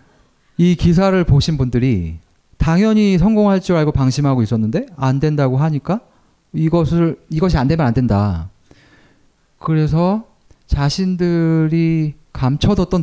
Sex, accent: male, native